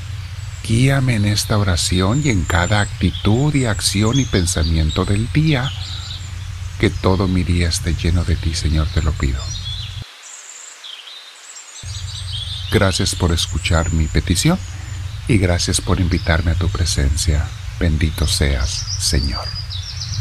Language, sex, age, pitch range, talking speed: Spanish, male, 50-69, 90-115 Hz, 120 wpm